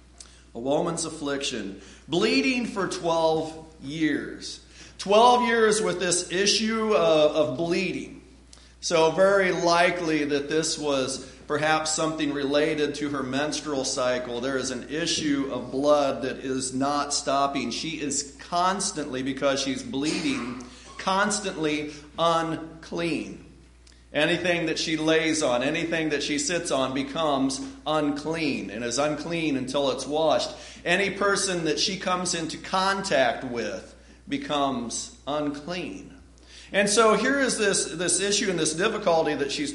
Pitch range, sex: 140-180 Hz, male